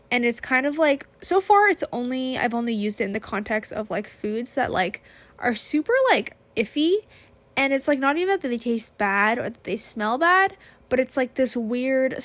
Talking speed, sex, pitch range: 215 wpm, female, 220-270 Hz